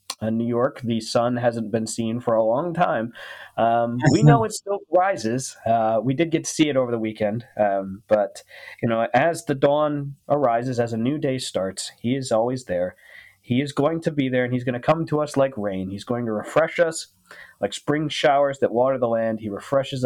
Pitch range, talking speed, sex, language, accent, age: 105-135 Hz, 220 wpm, male, English, American, 20-39